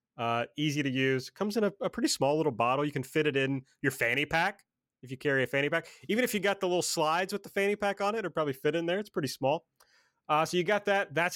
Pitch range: 130-185 Hz